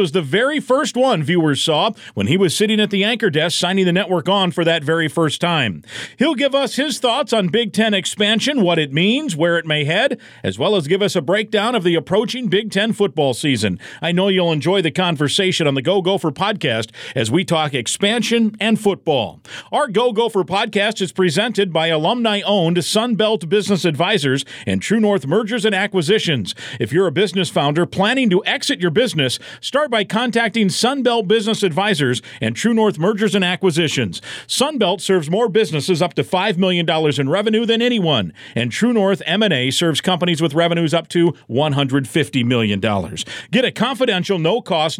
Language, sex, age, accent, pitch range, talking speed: English, male, 50-69, American, 160-215 Hz, 185 wpm